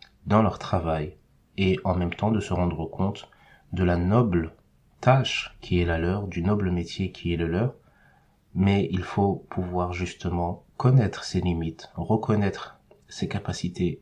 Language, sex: French, male